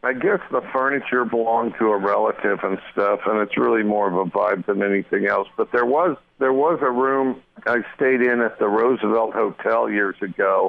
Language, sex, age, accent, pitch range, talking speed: English, male, 50-69, American, 100-110 Hz, 200 wpm